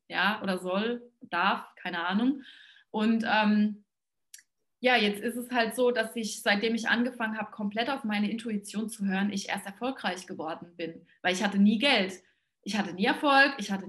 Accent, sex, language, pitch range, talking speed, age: German, female, German, 205-245 Hz, 180 wpm, 20-39